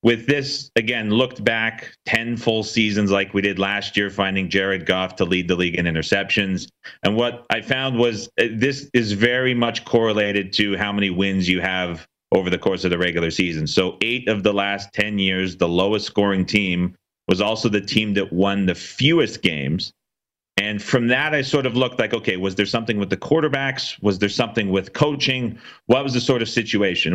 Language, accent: English, American